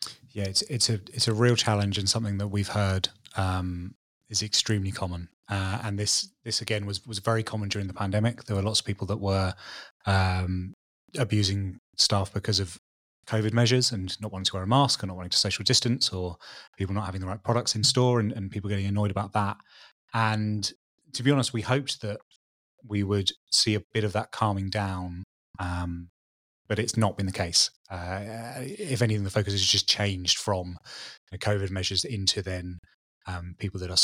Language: English